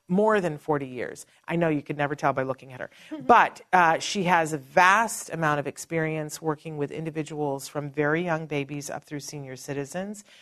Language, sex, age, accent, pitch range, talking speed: English, female, 40-59, American, 150-175 Hz, 195 wpm